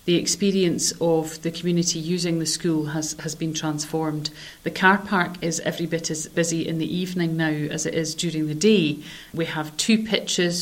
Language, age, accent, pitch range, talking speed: English, 40-59, British, 160-180 Hz, 190 wpm